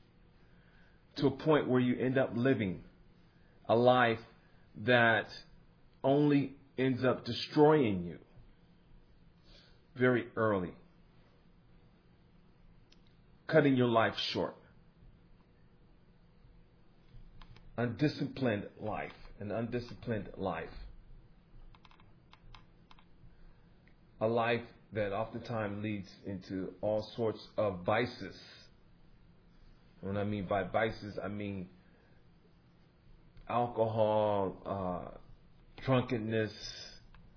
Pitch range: 100-130 Hz